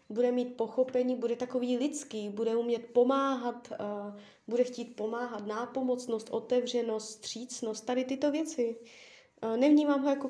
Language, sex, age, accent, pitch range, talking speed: Czech, female, 20-39, native, 215-265 Hz, 135 wpm